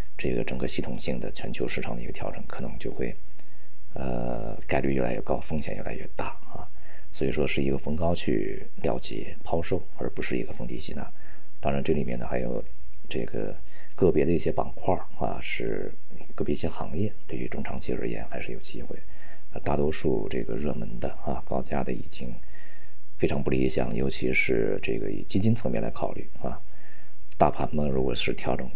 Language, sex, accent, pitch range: Chinese, male, native, 65-85 Hz